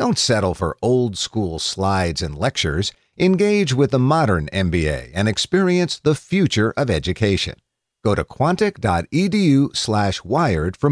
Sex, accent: male, American